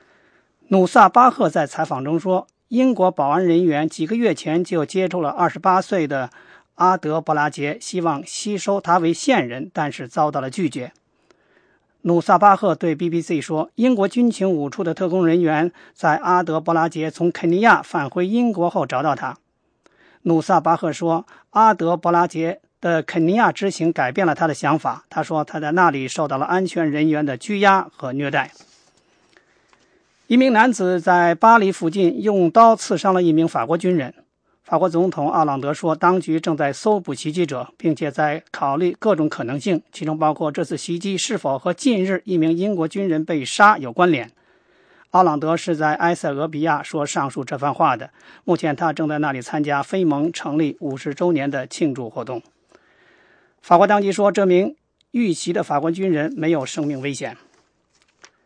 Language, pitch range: English, 155-185 Hz